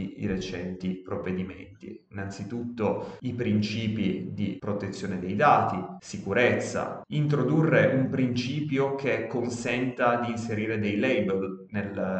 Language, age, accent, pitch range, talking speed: Italian, 30-49, native, 95-115 Hz, 100 wpm